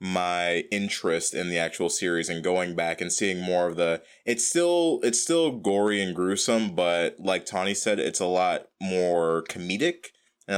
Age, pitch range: 20-39, 85-115 Hz